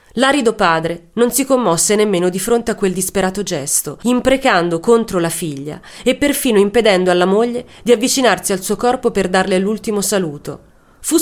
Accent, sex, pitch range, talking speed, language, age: native, female, 180-230 Hz, 165 wpm, Italian, 30-49